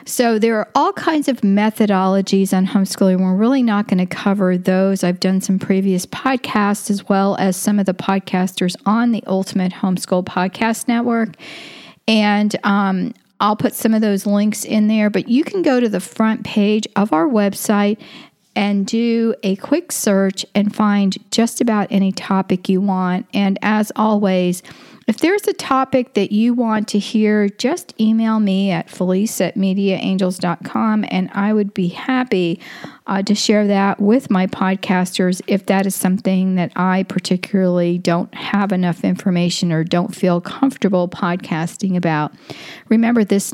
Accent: American